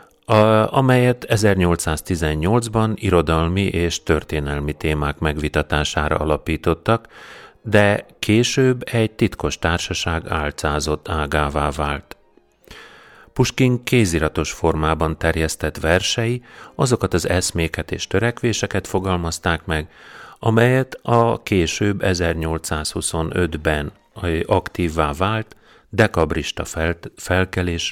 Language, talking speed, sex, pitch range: Hungarian, 75 wpm, male, 75-105 Hz